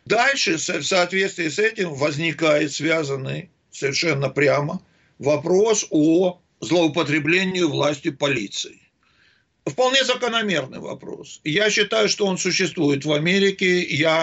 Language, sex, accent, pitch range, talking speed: Russian, male, native, 155-200 Hz, 105 wpm